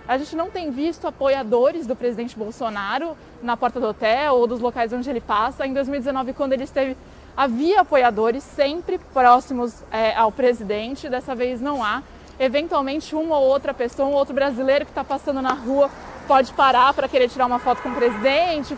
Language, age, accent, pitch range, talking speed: Portuguese, 20-39, Brazilian, 255-295 Hz, 180 wpm